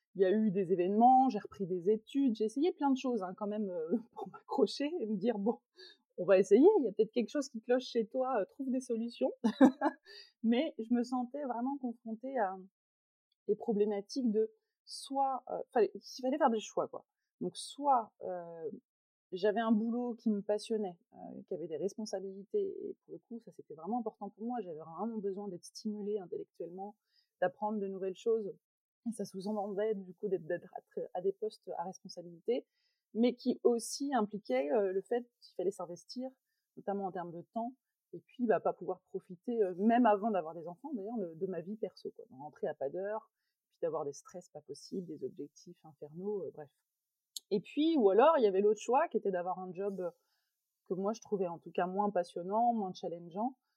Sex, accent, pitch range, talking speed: female, French, 195-255 Hz, 200 wpm